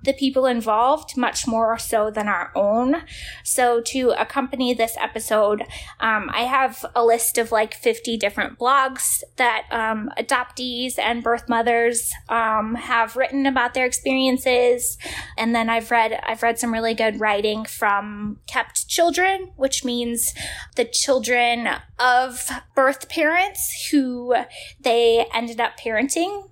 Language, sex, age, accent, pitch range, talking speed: English, female, 10-29, American, 220-260 Hz, 135 wpm